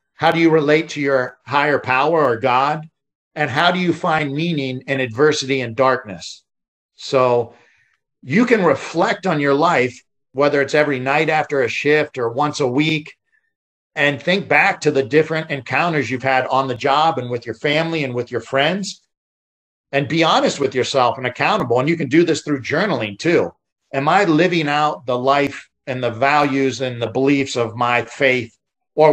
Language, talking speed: English, 185 wpm